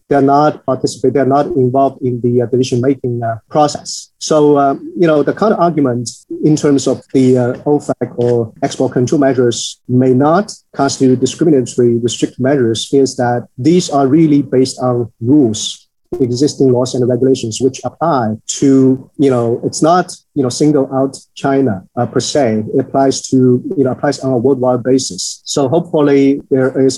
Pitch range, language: 125-145 Hz, English